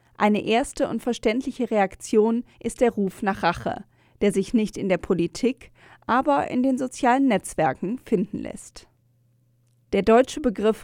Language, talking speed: German, 145 wpm